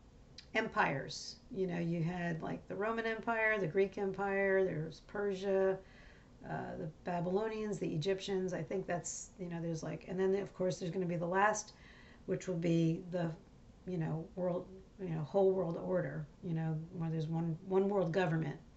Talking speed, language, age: 180 wpm, English, 40-59